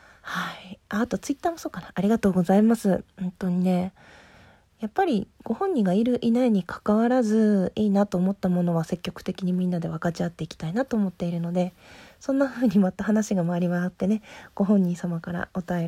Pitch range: 180-235 Hz